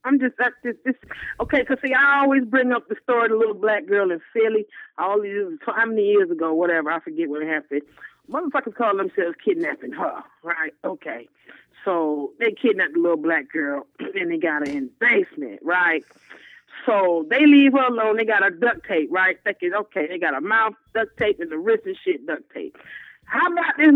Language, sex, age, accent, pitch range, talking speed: English, female, 40-59, American, 215-325 Hz, 200 wpm